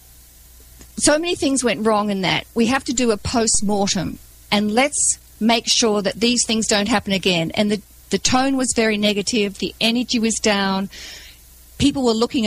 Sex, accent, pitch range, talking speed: female, Australian, 200-245 Hz, 180 wpm